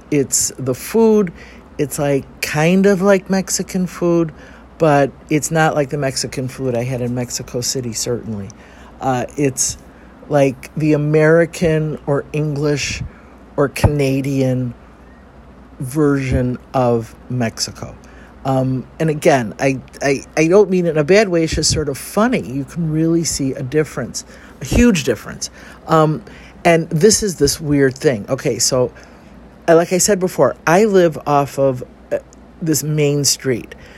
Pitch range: 130-165 Hz